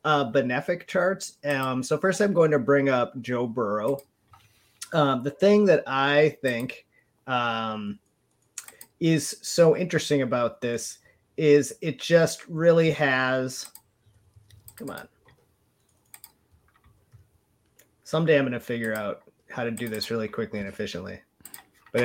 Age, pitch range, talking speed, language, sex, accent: 30-49, 125-165 Hz, 130 wpm, English, male, American